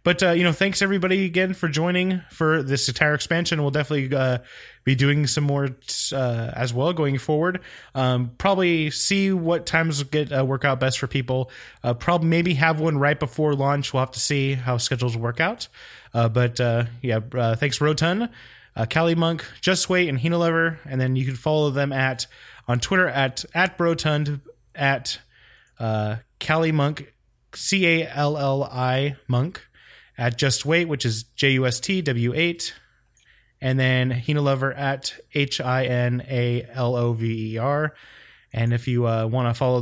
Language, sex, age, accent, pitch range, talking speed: English, male, 20-39, American, 125-155 Hz, 175 wpm